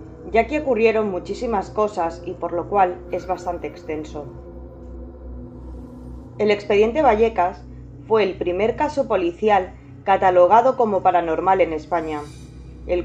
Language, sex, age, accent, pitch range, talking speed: Spanish, female, 20-39, Spanish, 125-210 Hz, 120 wpm